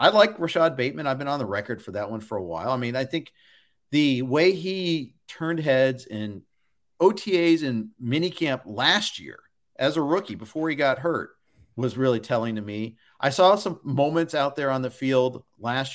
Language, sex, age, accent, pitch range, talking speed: English, male, 40-59, American, 120-170 Hz, 195 wpm